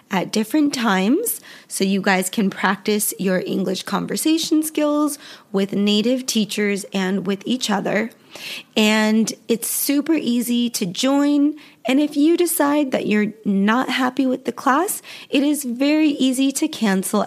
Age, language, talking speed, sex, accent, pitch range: 20-39, English, 145 wpm, female, American, 200-275 Hz